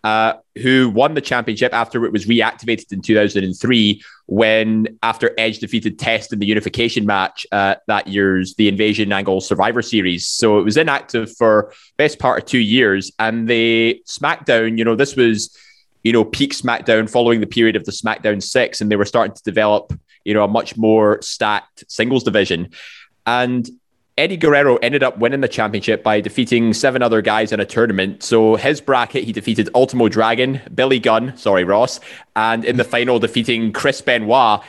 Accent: British